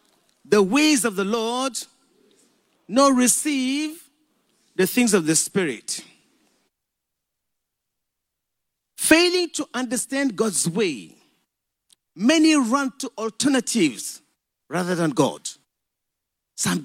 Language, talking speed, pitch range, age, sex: English, 90 wpm, 200-275 Hz, 50-69, male